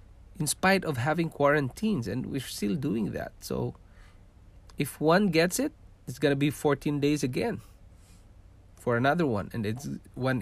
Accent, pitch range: Filipino, 95-145 Hz